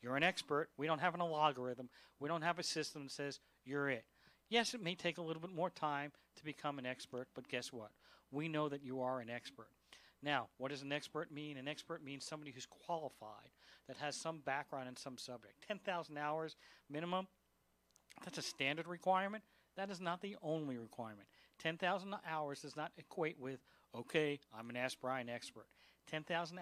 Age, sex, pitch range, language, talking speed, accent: 40-59, male, 135-160 Hz, English, 190 wpm, American